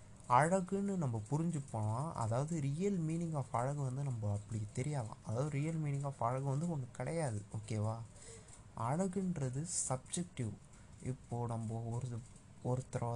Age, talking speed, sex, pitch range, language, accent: 30-49, 110 wpm, male, 110-155 Hz, Tamil, native